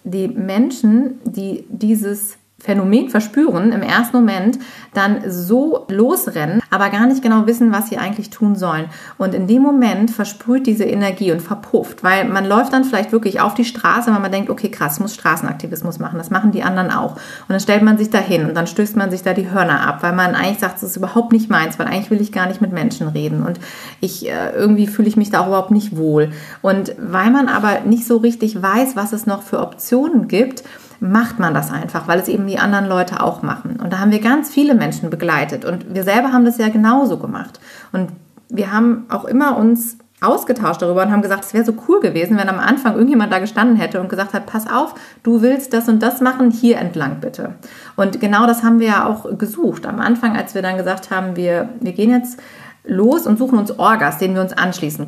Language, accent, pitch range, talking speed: German, German, 190-235 Hz, 225 wpm